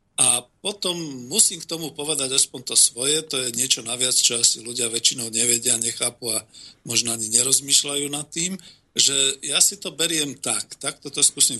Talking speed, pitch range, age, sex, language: 175 wpm, 120-140 Hz, 50-69, male, Slovak